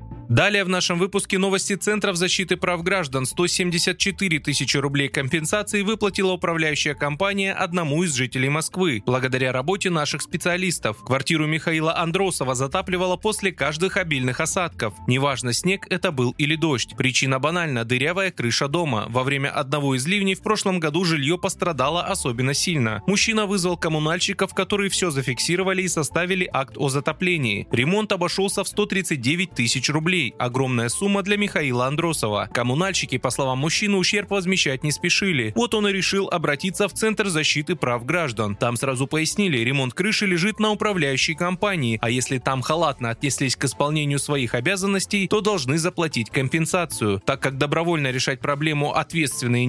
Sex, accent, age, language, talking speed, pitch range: male, native, 20-39, Russian, 150 wpm, 135-190 Hz